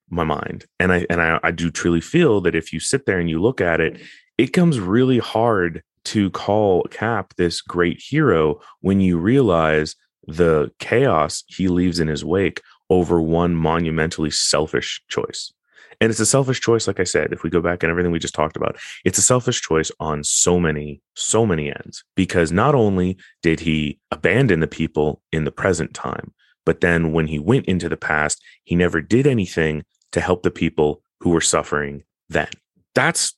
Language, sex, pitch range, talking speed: English, male, 75-90 Hz, 190 wpm